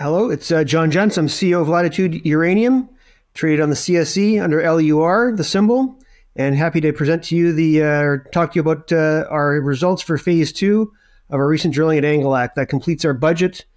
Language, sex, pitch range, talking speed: English, male, 145-175 Hz, 200 wpm